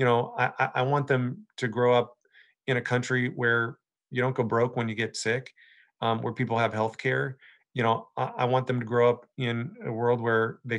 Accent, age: American, 40-59